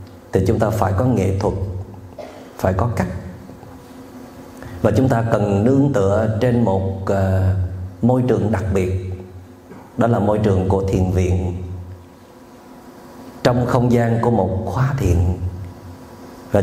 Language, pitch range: Vietnamese, 95-125 Hz